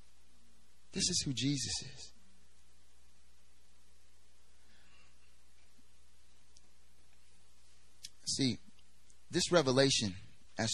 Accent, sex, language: American, male, English